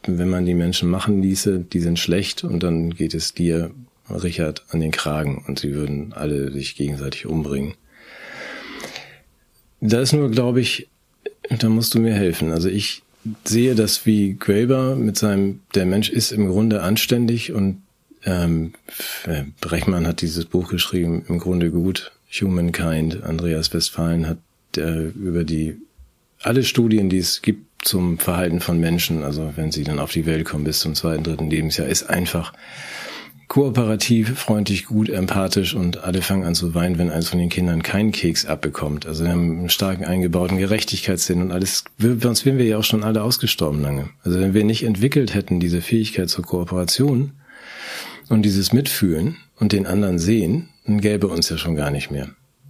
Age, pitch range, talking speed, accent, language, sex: 40-59, 85-110 Hz, 175 wpm, German, German, male